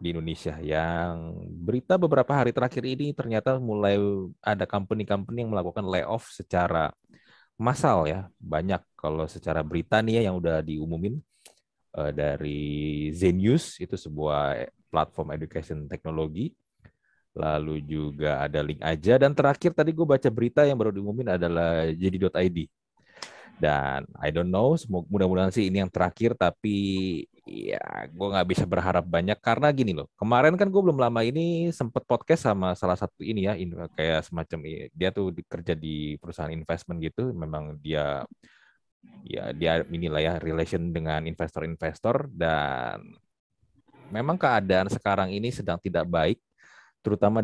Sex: male